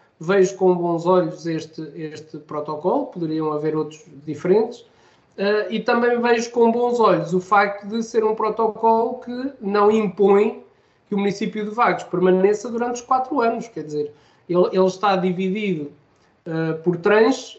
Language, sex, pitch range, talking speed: Portuguese, male, 170-215 Hz, 150 wpm